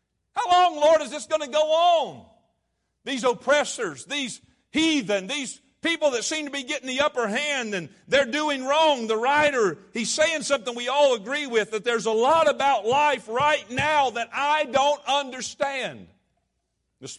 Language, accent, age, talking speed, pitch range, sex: English, American, 50-69, 170 wpm, 155-265 Hz, male